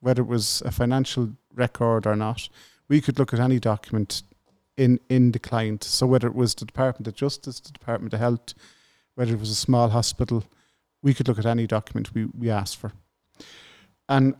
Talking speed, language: 195 wpm, English